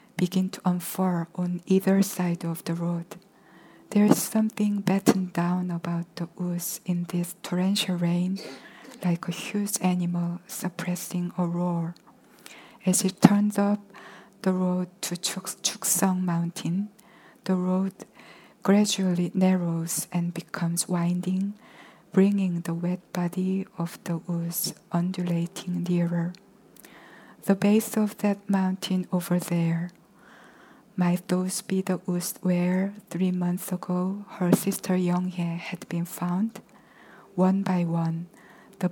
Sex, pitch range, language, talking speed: female, 175-195 Hz, English, 125 wpm